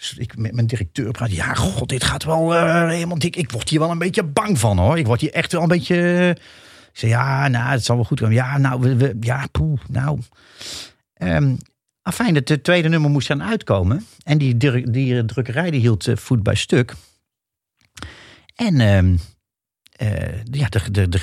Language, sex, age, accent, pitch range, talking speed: Dutch, male, 50-69, Dutch, 105-145 Hz, 190 wpm